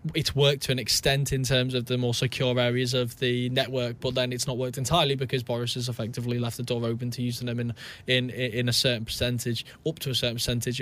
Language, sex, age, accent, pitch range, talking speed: English, male, 10-29, British, 120-135 Hz, 240 wpm